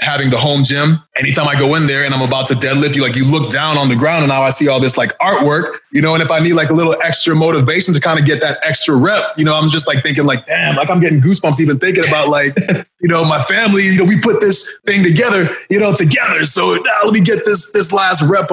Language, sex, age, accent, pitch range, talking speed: English, male, 20-39, American, 135-165 Hz, 280 wpm